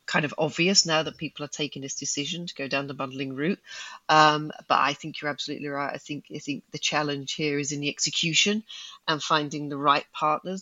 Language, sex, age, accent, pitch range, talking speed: English, female, 40-59, British, 145-185 Hz, 220 wpm